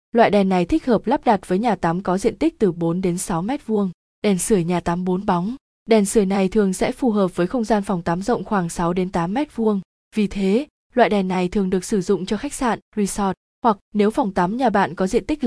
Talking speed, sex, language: 255 wpm, female, Vietnamese